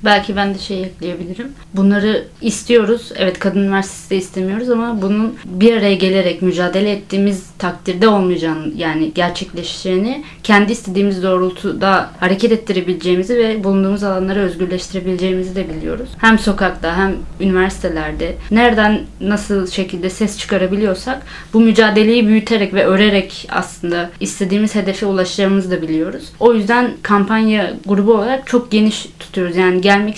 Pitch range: 180-215 Hz